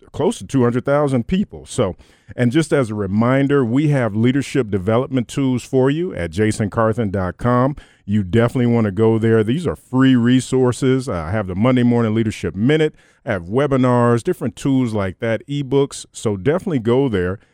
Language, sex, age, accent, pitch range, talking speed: English, male, 40-59, American, 105-135 Hz, 160 wpm